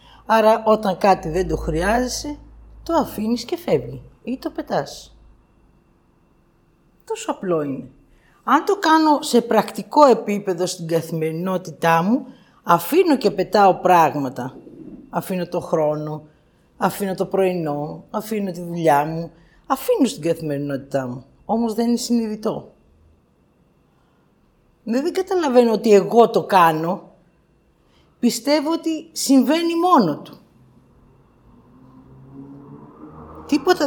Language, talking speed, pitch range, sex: Greek, 105 wpm, 165-250 Hz, female